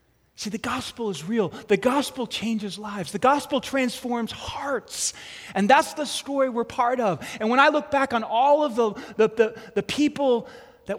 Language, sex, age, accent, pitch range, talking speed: English, male, 30-49, American, 185-255 Hz, 175 wpm